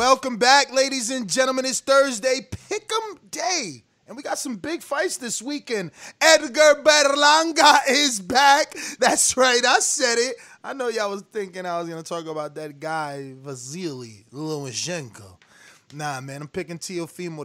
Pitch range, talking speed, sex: 170-270 Hz, 160 wpm, male